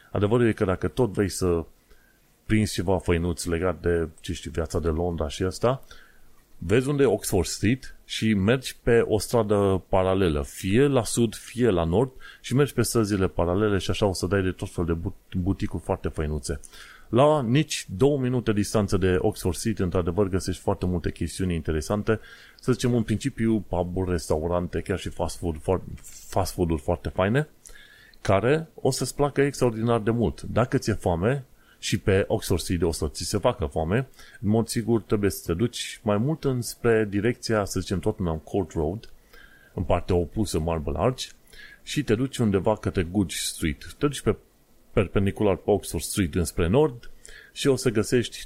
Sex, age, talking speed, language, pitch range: male, 30-49, 175 wpm, Romanian, 90-115 Hz